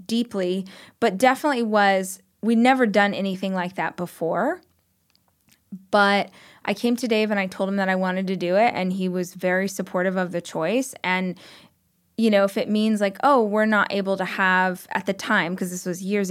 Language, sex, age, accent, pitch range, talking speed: English, female, 20-39, American, 185-220 Hz, 200 wpm